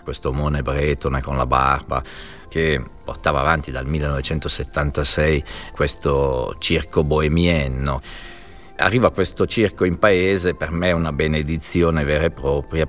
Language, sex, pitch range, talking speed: Italian, male, 70-85 Hz, 125 wpm